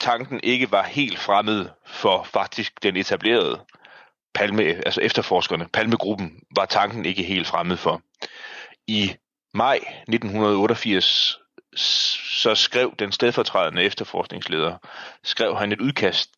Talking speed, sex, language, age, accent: 115 wpm, male, Danish, 30-49, native